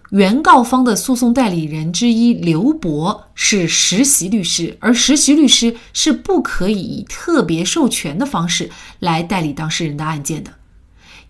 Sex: female